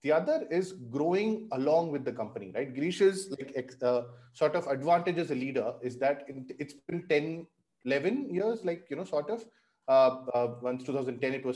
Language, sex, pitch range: English, male, 135-175 Hz